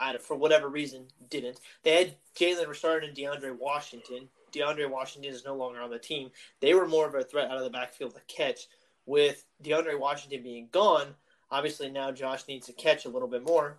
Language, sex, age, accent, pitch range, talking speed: English, male, 20-39, American, 140-170 Hz, 205 wpm